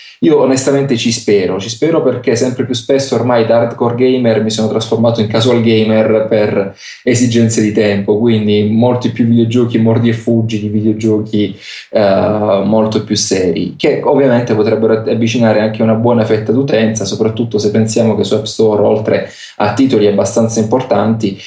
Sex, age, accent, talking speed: male, 20-39, native, 160 wpm